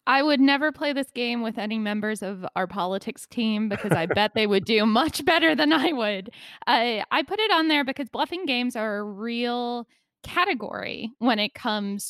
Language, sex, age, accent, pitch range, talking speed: English, female, 10-29, American, 190-250 Hz, 200 wpm